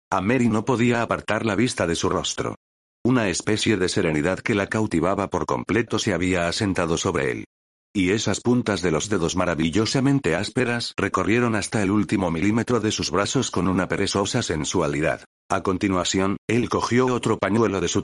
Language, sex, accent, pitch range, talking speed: Spanish, male, Spanish, 90-115 Hz, 175 wpm